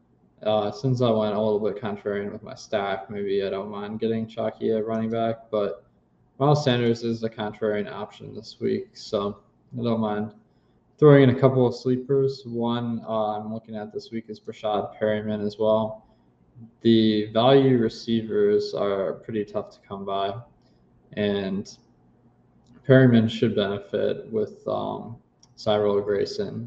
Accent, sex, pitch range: American, male, 105-130 Hz